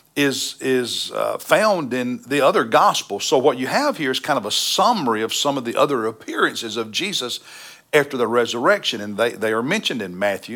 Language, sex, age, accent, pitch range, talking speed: English, male, 60-79, American, 115-140 Hz, 205 wpm